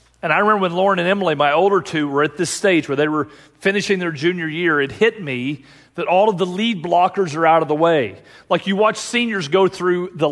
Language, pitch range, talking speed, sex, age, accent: English, 145-190 Hz, 245 wpm, male, 40-59, American